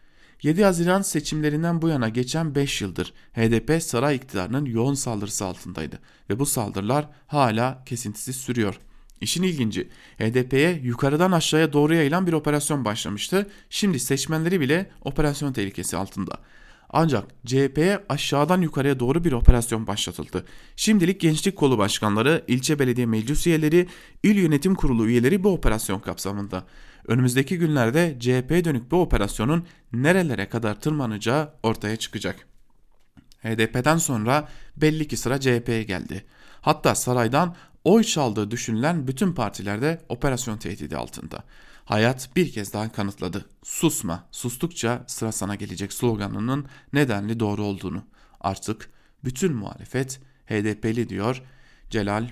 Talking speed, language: 125 wpm, German